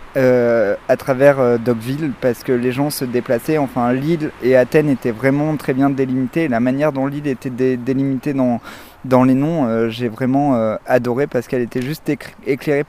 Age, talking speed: 20-39, 195 wpm